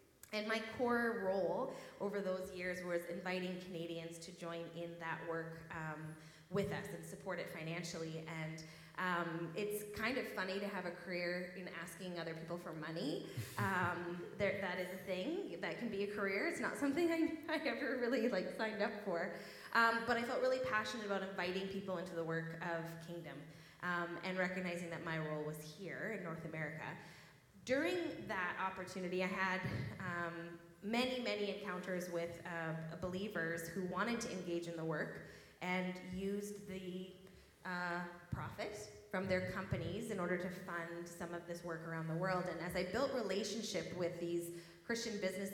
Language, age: English, 20-39